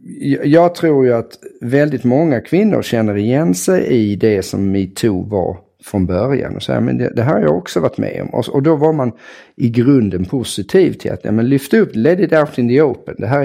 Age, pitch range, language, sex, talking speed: 50-69, 105-135 Hz, English, male, 220 wpm